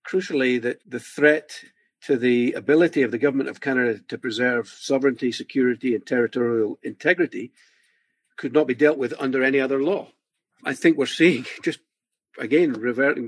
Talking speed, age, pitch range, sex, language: 160 wpm, 50-69, 115-145 Hz, male, English